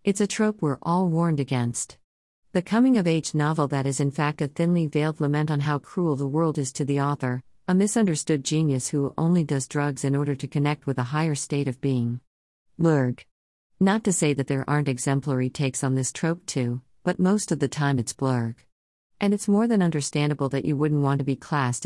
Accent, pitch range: American, 130-165 Hz